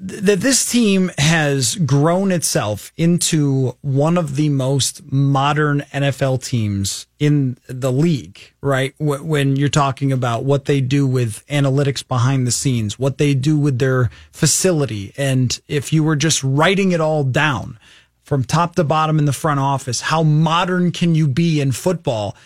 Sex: male